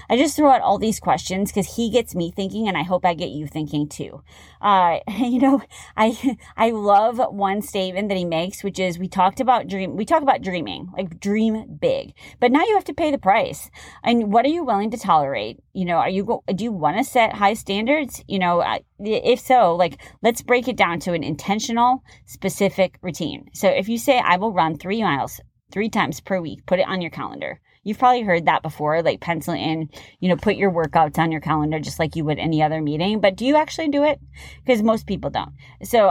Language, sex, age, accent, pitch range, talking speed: English, female, 30-49, American, 170-225 Hz, 225 wpm